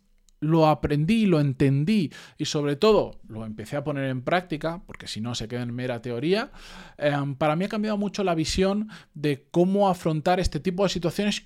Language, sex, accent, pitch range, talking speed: Spanish, male, Spanish, 130-185 Hz, 190 wpm